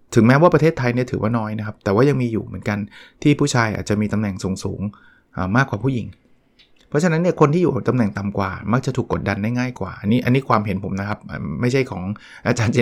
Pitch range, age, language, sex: 105-130 Hz, 20-39, Thai, male